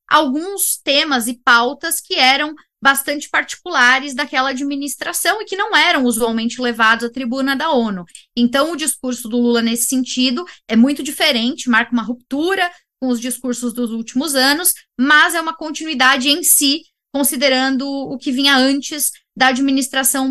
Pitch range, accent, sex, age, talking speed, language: 235-280 Hz, Brazilian, female, 10-29, 155 wpm, Portuguese